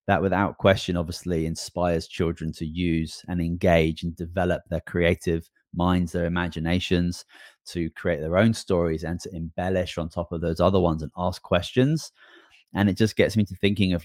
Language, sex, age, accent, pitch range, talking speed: English, male, 20-39, British, 80-95 Hz, 180 wpm